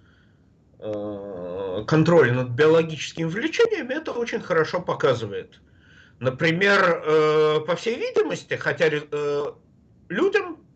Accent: native